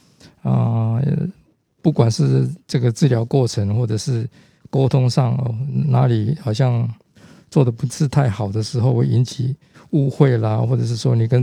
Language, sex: Chinese, male